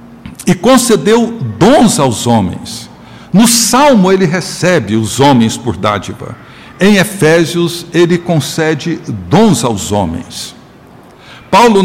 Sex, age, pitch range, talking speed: male, 60-79, 130-190 Hz, 105 wpm